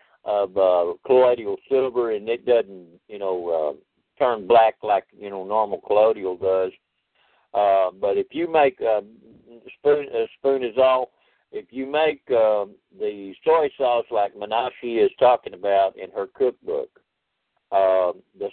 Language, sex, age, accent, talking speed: English, male, 50-69, American, 150 wpm